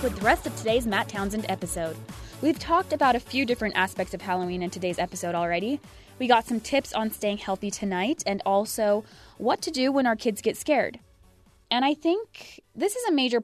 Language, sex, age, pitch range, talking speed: English, female, 20-39, 190-250 Hz, 205 wpm